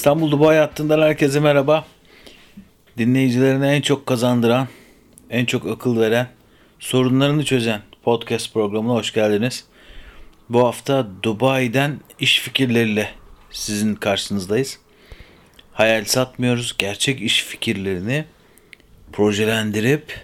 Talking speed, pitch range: 95 wpm, 105-130 Hz